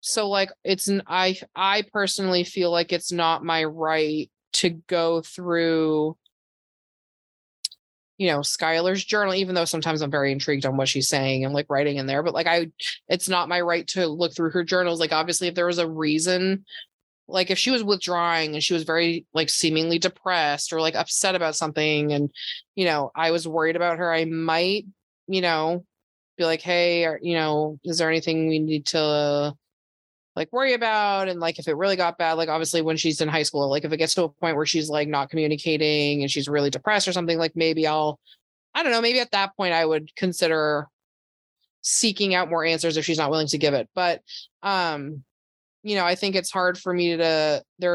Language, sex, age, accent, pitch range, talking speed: English, female, 20-39, American, 155-180 Hz, 210 wpm